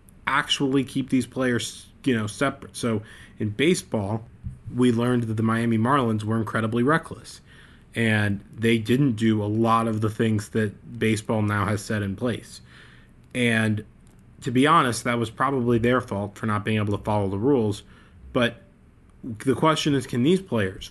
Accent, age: American, 20-39